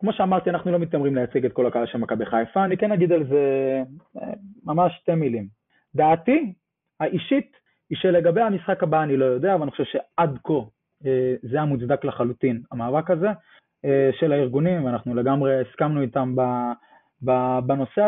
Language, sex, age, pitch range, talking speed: Hebrew, male, 20-39, 125-175 Hz, 150 wpm